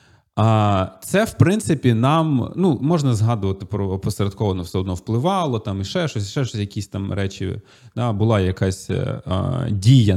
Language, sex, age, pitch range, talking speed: Ukrainian, male, 30-49, 100-130 Hz, 165 wpm